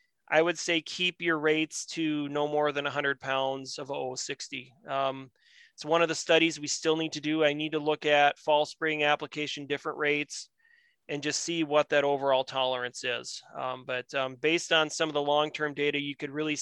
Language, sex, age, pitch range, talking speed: English, male, 30-49, 140-160 Hz, 205 wpm